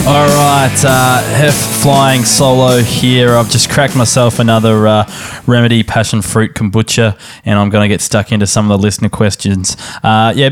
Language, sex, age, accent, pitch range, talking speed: English, male, 20-39, Australian, 100-125 Hz, 170 wpm